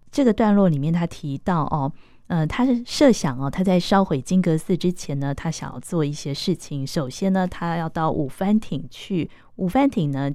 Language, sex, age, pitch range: Chinese, female, 20-39, 150-200 Hz